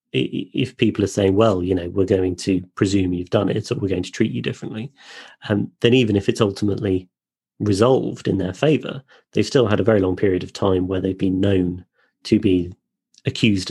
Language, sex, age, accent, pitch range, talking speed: English, male, 30-49, British, 95-110 Hz, 205 wpm